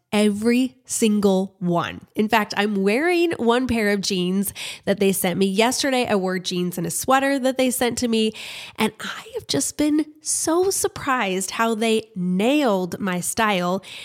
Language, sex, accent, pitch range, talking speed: English, female, American, 190-255 Hz, 165 wpm